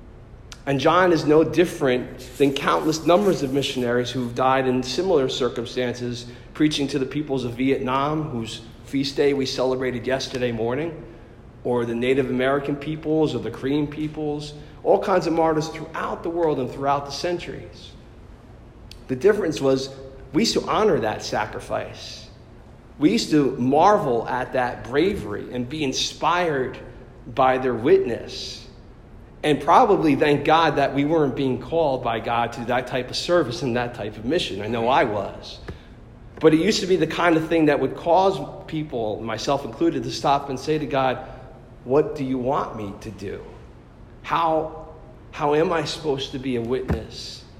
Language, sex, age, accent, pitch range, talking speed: English, male, 40-59, American, 120-155 Hz, 170 wpm